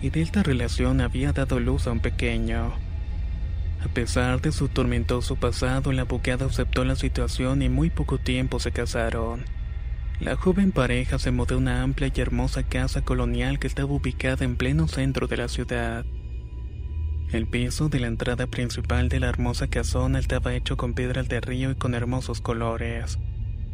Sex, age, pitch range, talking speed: male, 20-39, 80-130 Hz, 170 wpm